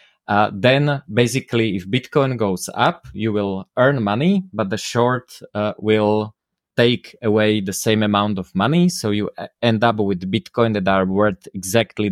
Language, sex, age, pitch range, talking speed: English, male, 20-39, 95-120 Hz, 165 wpm